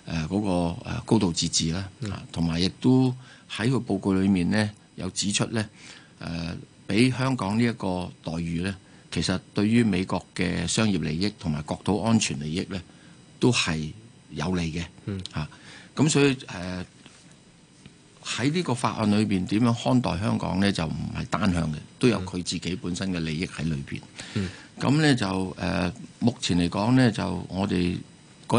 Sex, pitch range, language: male, 90-110 Hz, Chinese